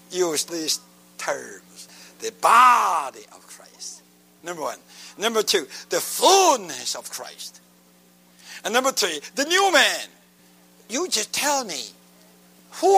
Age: 60-79